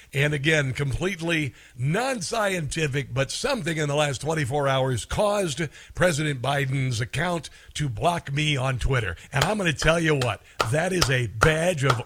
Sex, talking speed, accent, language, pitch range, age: male, 160 wpm, American, English, 135-175 Hz, 60-79